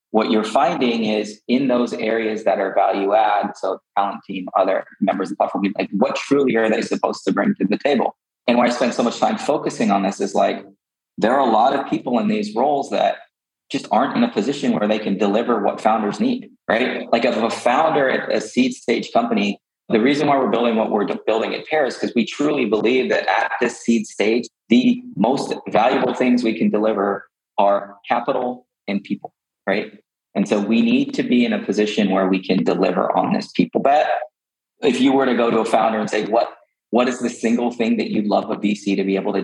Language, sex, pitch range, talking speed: English, male, 105-125 Hz, 220 wpm